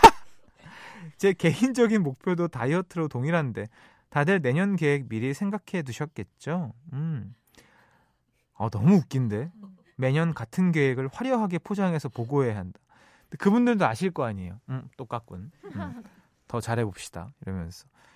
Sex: male